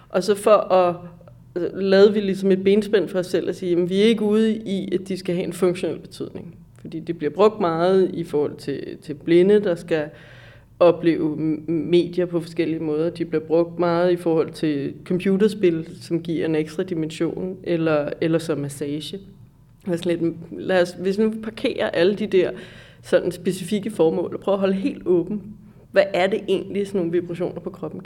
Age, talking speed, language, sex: 30-49, 195 wpm, Danish, female